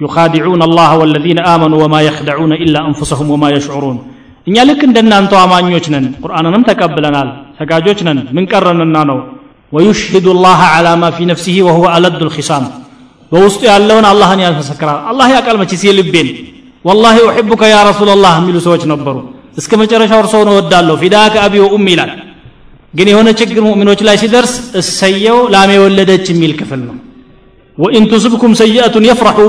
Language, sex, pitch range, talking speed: Amharic, male, 165-220 Hz, 130 wpm